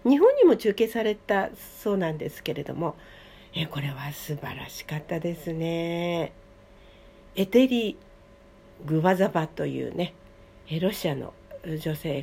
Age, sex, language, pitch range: 50-69, female, Japanese, 145-195 Hz